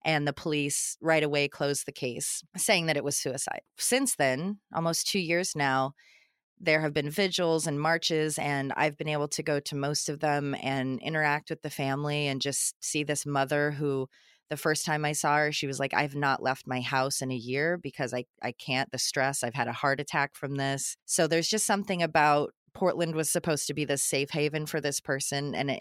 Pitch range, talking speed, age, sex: 140-170 Hz, 220 wpm, 30-49, female